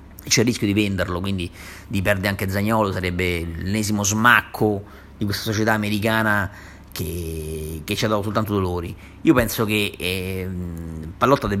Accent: native